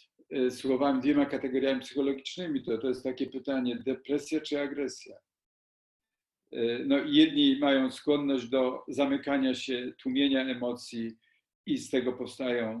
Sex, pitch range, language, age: male, 125-150 Hz, Polish, 50-69